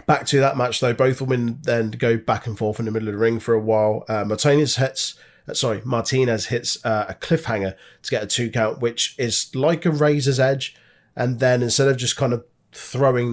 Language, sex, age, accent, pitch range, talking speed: English, male, 30-49, British, 110-125 Hz, 225 wpm